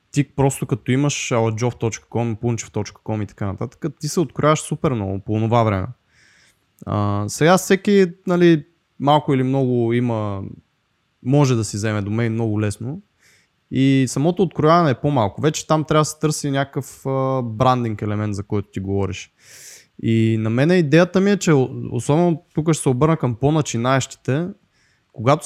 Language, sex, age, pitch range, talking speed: Bulgarian, male, 20-39, 115-150 Hz, 160 wpm